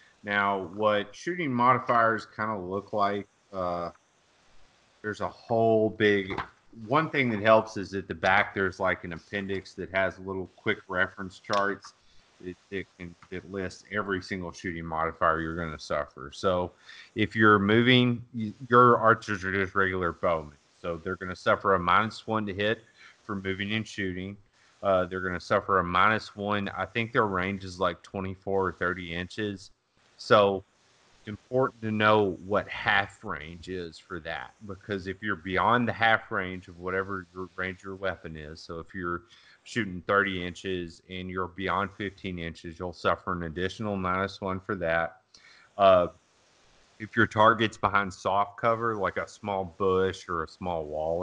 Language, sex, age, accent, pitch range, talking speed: English, male, 30-49, American, 90-105 Hz, 165 wpm